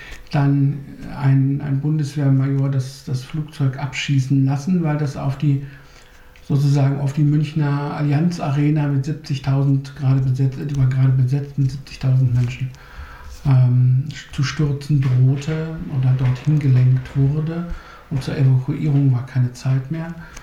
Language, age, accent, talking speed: English, 60-79, German, 120 wpm